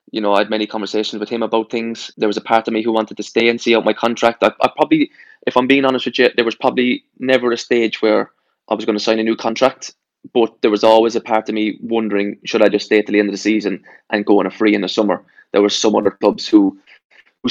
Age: 20-39